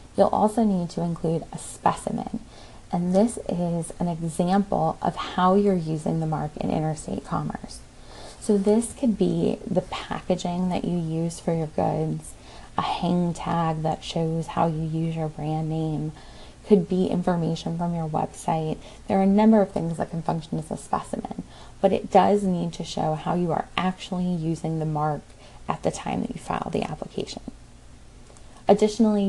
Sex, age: female, 20-39